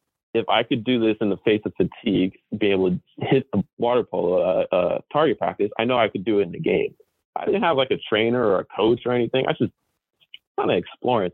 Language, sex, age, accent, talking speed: English, male, 20-39, American, 250 wpm